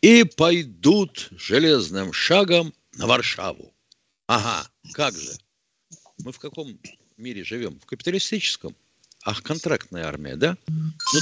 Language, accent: Russian, native